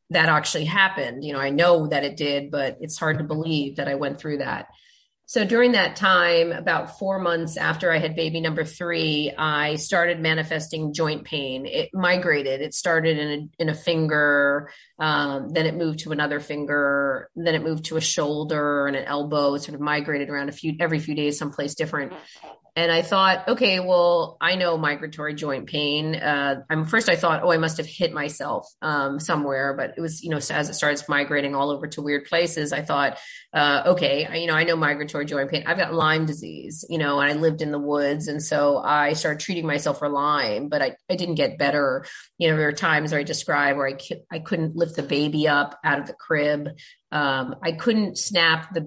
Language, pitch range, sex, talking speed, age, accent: English, 145-170 Hz, female, 215 wpm, 30-49, American